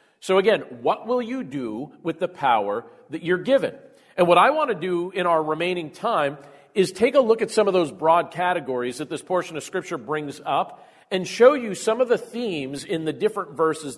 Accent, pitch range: American, 160-205 Hz